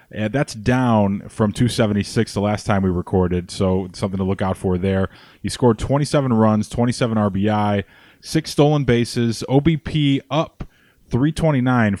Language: English